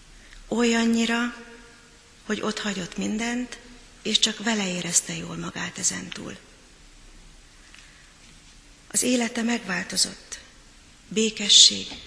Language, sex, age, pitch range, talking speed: Hungarian, female, 30-49, 190-230 Hz, 75 wpm